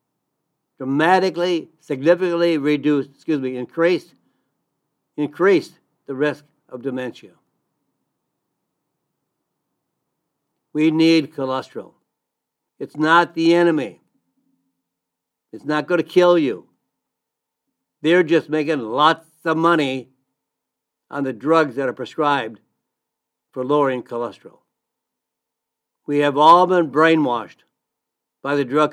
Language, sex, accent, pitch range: English, male, American, 130-165 Hz